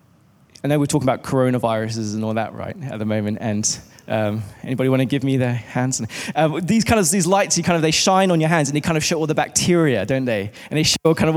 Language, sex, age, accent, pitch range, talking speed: English, male, 20-39, British, 125-155 Hz, 270 wpm